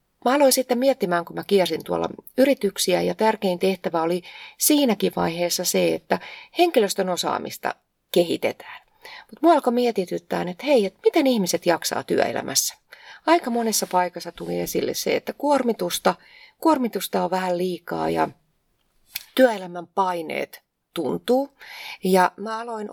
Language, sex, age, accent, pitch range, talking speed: Finnish, female, 30-49, native, 180-260 Hz, 130 wpm